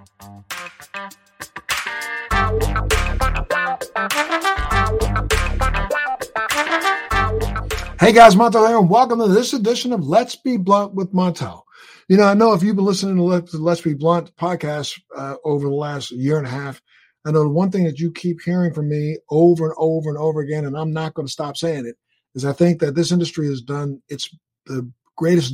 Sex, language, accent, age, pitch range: male, English, American, 50-69, 145-175 Hz